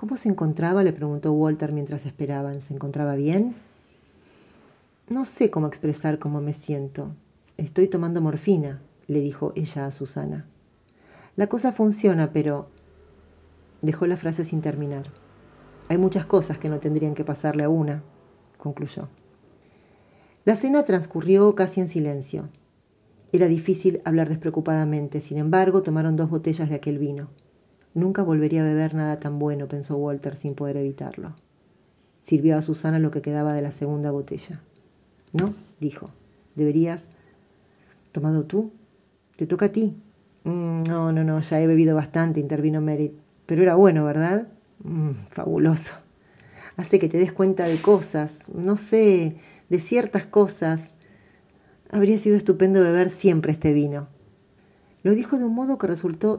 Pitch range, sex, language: 150-190 Hz, female, Spanish